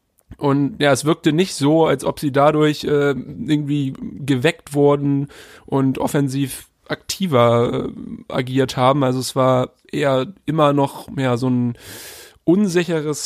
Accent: German